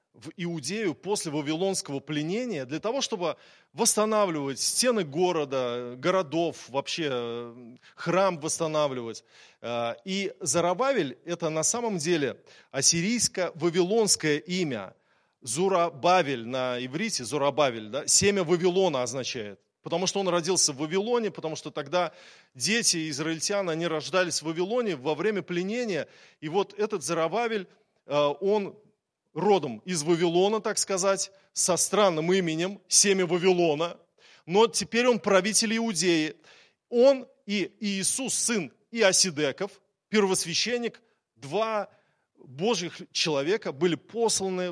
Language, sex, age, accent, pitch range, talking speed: Russian, male, 20-39, native, 155-200 Hz, 110 wpm